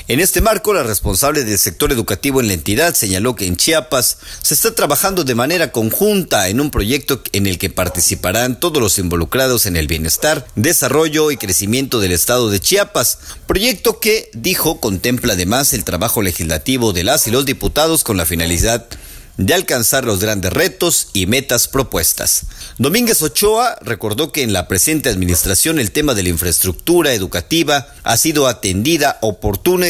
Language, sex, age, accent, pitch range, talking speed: Spanish, male, 40-59, Mexican, 95-150 Hz, 165 wpm